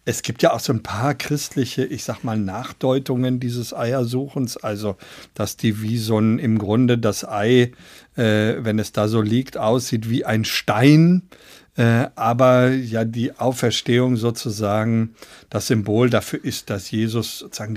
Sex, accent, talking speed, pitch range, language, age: male, German, 155 wpm, 115-150 Hz, German, 50-69